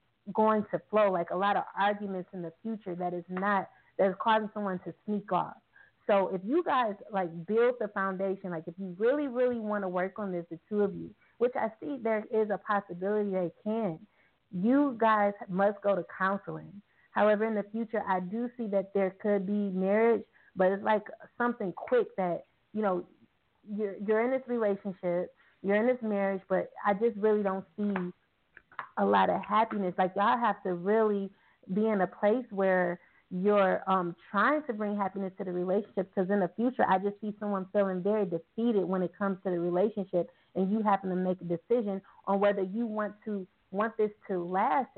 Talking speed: 200 wpm